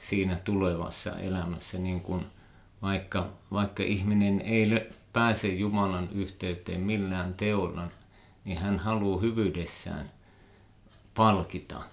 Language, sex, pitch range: Finnish, male, 90-105 Hz